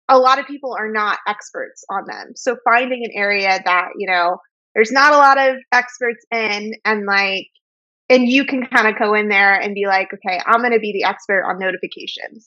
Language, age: English, 20-39